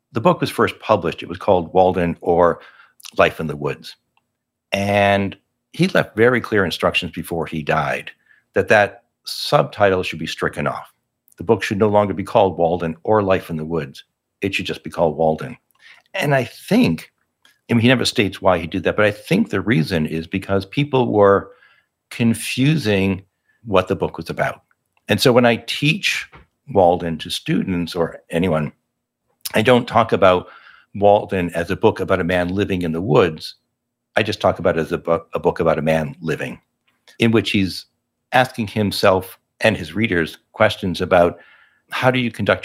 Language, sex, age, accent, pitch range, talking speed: English, male, 60-79, American, 85-110 Hz, 180 wpm